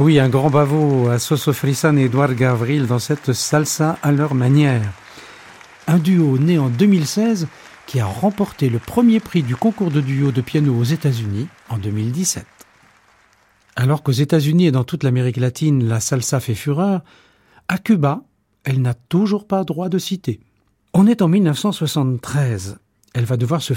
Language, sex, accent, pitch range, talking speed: French, male, French, 125-170 Hz, 170 wpm